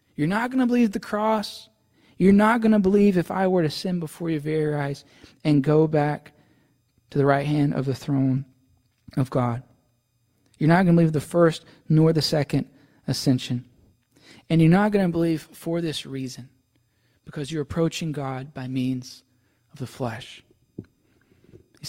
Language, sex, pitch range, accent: English, male, 125-165 Hz, American